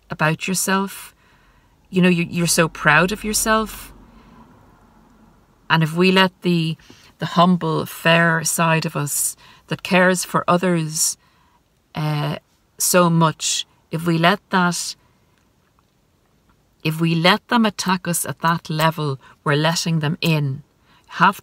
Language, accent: English, Irish